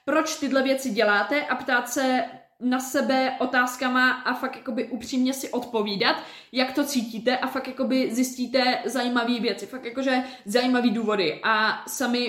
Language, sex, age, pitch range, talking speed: Czech, female, 20-39, 230-265 Hz, 140 wpm